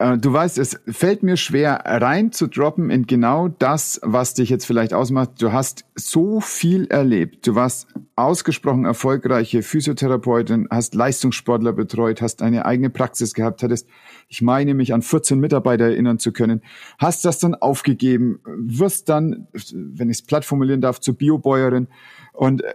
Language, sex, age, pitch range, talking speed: German, male, 50-69, 120-150 Hz, 155 wpm